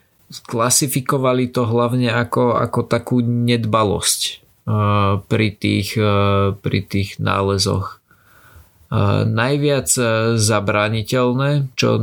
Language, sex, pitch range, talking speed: Slovak, male, 105-120 Hz, 75 wpm